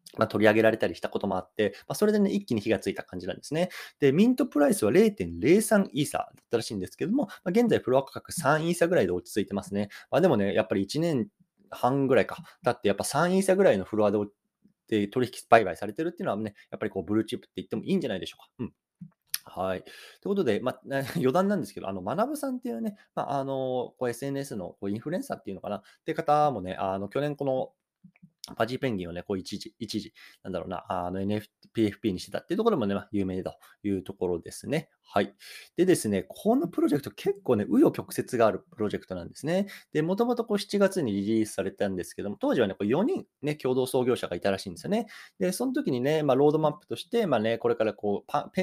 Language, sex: Japanese, male